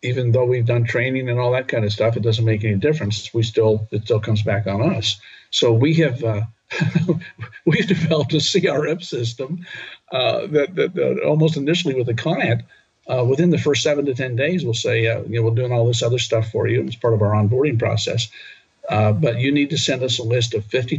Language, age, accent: English, 50-69, American